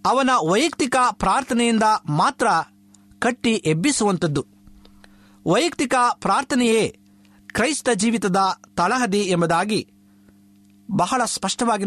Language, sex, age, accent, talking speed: English, male, 50-69, Indian, 65 wpm